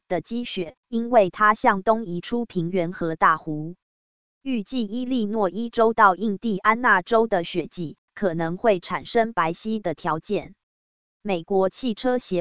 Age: 20-39